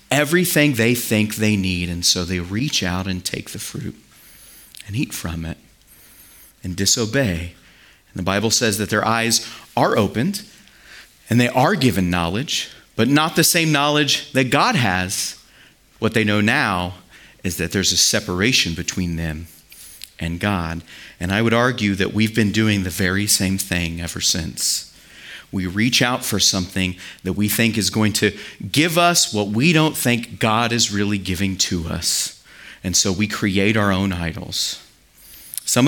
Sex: male